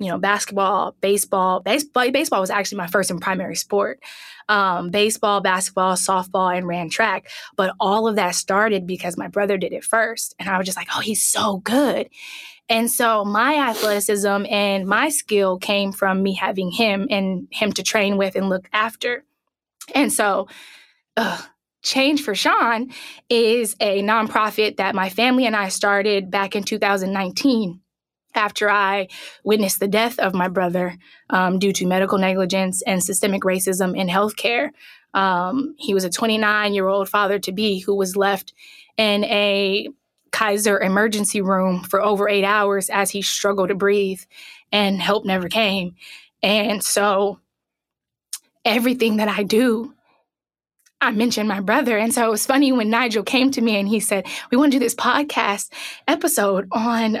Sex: female